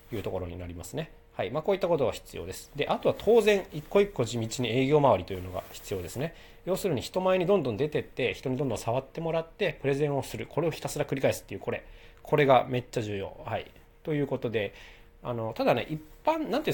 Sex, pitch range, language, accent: male, 105-155 Hz, Japanese, native